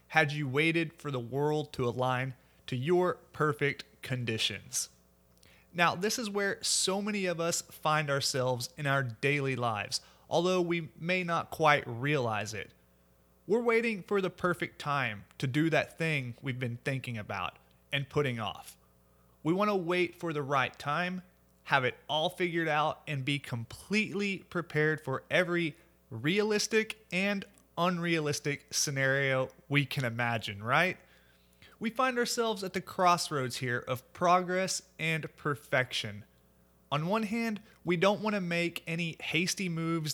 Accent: American